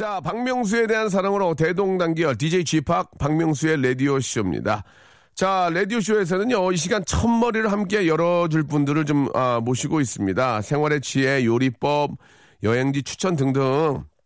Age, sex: 40-59, male